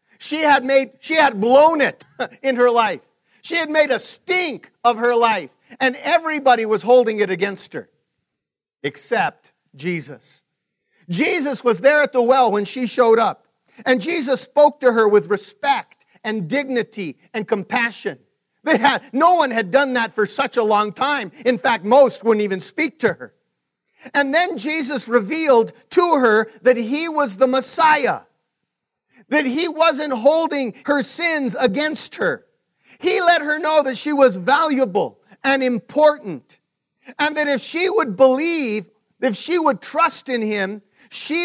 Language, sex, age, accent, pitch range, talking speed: English, male, 50-69, American, 230-300 Hz, 160 wpm